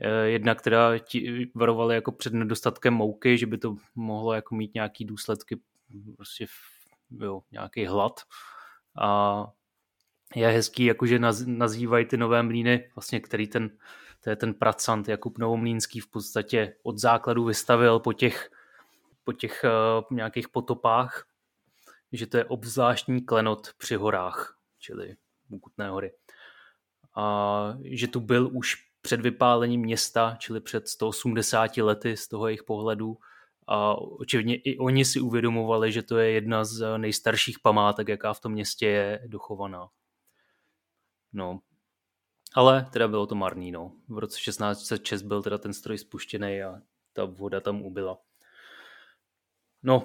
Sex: male